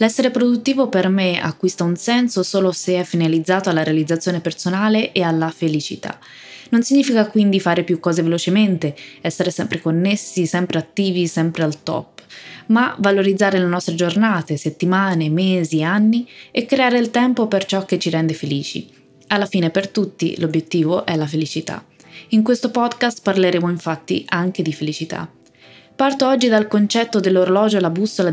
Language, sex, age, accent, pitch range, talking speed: Italian, female, 20-39, native, 165-215 Hz, 155 wpm